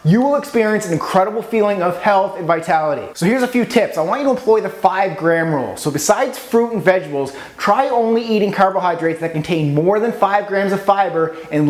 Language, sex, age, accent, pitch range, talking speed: English, male, 30-49, American, 180-230 Hz, 215 wpm